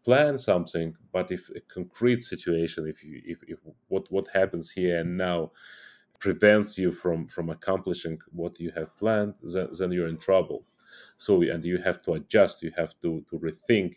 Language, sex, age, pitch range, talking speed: English, male, 30-49, 85-105 Hz, 180 wpm